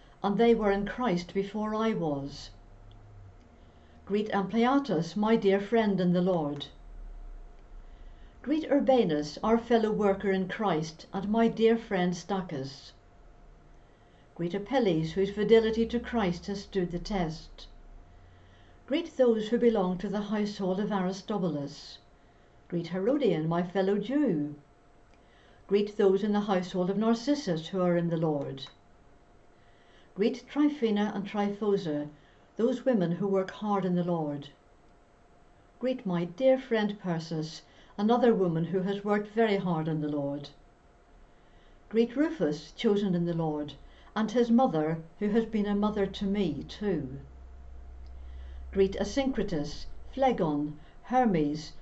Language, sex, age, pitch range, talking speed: English, female, 60-79, 145-210 Hz, 130 wpm